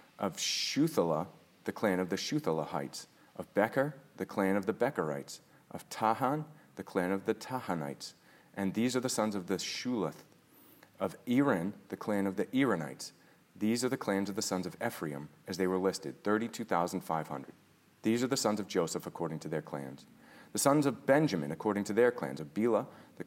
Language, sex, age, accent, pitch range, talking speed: English, male, 40-59, American, 90-115 Hz, 185 wpm